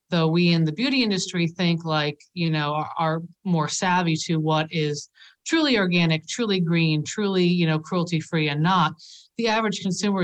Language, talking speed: English, 175 wpm